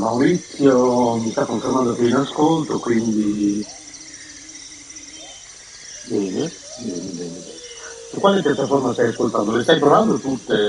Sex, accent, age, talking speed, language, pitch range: male, native, 50-69, 110 wpm, Italian, 110-135 Hz